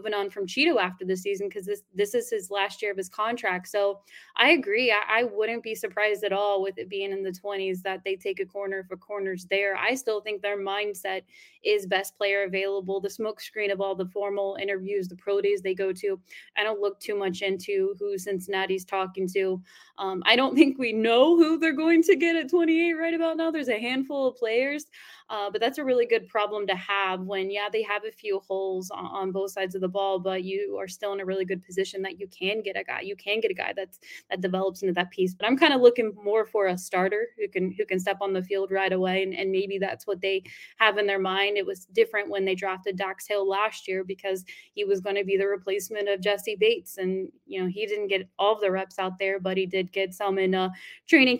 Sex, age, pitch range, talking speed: female, 20-39, 190-220 Hz, 250 wpm